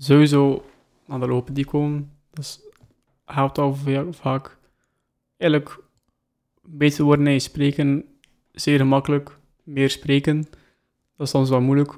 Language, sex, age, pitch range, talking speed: Dutch, male, 20-39, 135-150 Hz, 130 wpm